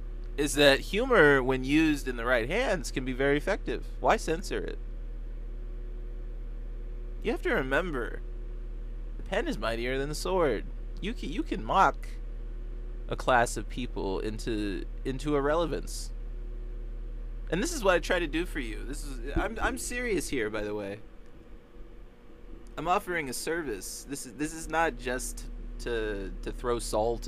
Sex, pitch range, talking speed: male, 115-140 Hz, 160 wpm